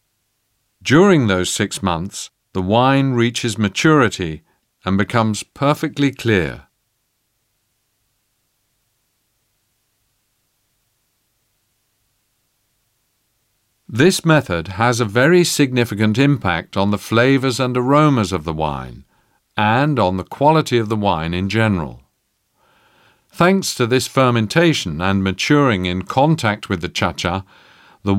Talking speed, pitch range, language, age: 100 wpm, 100-130 Hz, French, 50-69